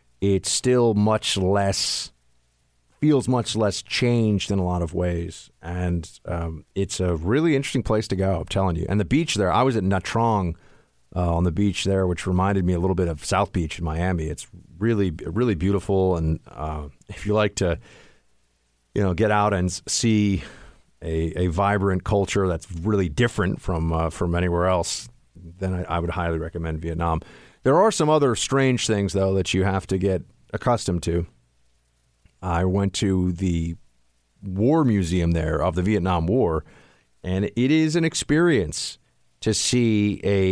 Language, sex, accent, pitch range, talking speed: English, male, American, 85-105 Hz, 175 wpm